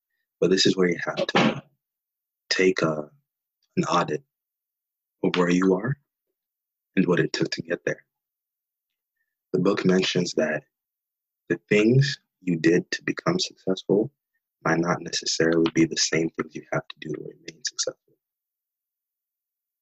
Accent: American